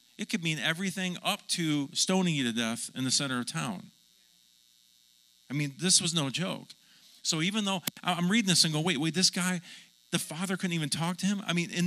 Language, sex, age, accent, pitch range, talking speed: English, male, 40-59, American, 140-200 Hz, 215 wpm